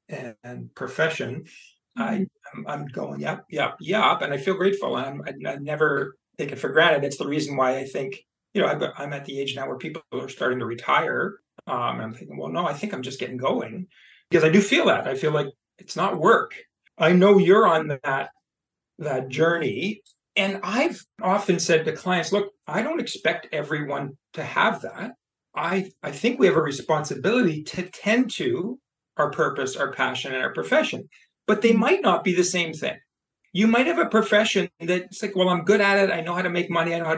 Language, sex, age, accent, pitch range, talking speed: English, male, 40-59, American, 155-200 Hz, 210 wpm